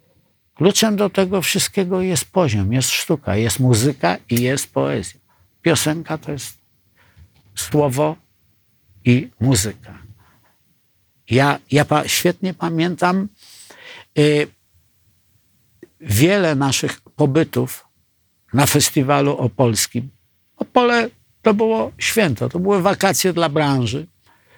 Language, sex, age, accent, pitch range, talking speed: Polish, male, 60-79, native, 105-165 Hz, 95 wpm